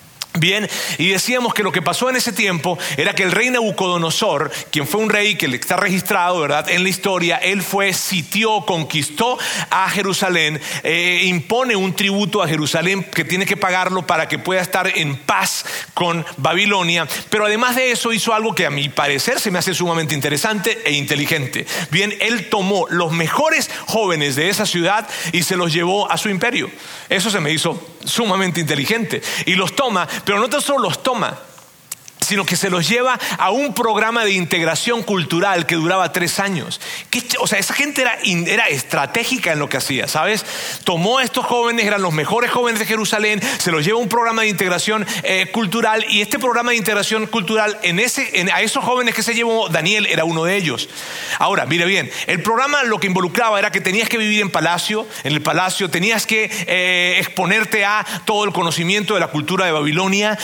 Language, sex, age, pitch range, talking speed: Spanish, male, 40-59, 175-220 Hz, 195 wpm